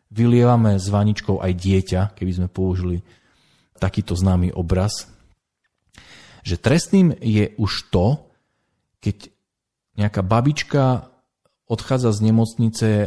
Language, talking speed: Slovak, 100 wpm